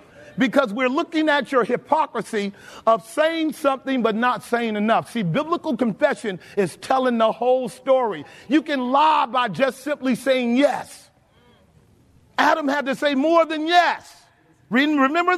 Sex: male